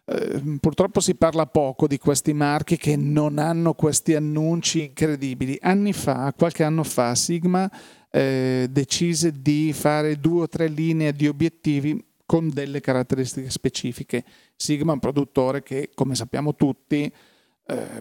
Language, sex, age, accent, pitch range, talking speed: Italian, male, 40-59, native, 140-175 Hz, 145 wpm